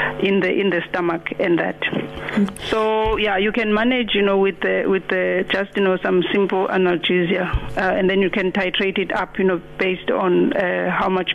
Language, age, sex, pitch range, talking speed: English, 50-69, female, 185-220 Hz, 205 wpm